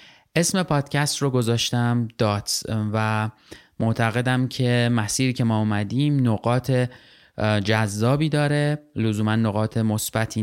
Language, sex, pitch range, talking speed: Persian, male, 110-130 Hz, 105 wpm